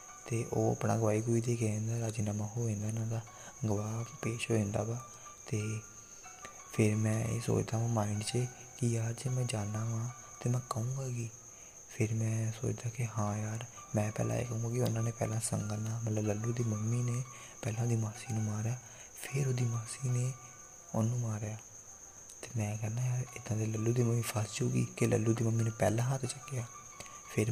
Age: 20-39